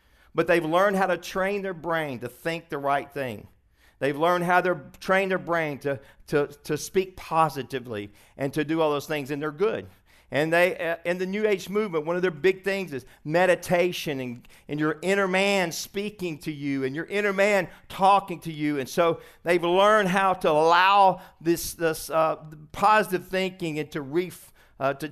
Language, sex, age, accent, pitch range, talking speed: English, male, 50-69, American, 135-180 Hz, 195 wpm